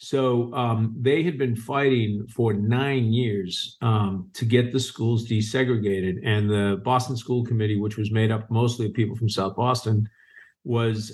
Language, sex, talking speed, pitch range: English, male, 165 wpm, 105-125 Hz